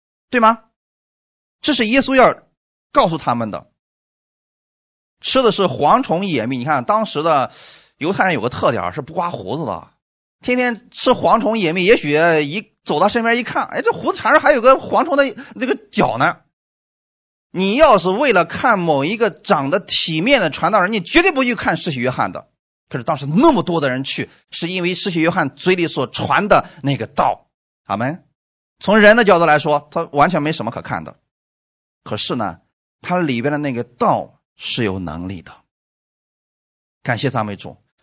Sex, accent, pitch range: male, native, 140-225 Hz